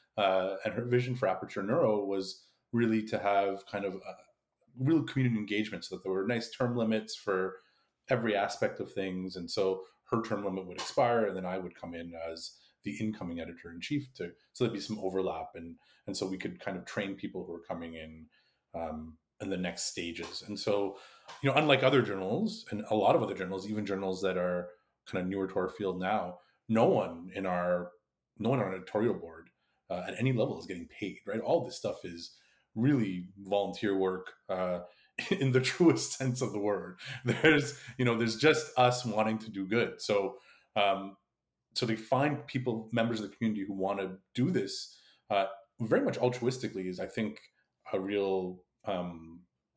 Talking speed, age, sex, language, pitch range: 195 wpm, 30-49, male, English, 95-120 Hz